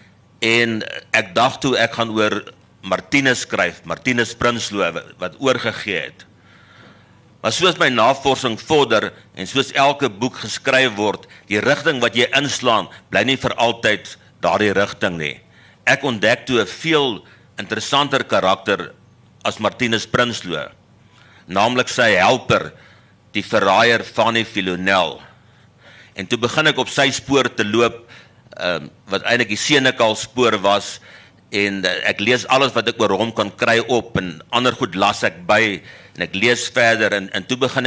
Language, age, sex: Dutch, 60-79, male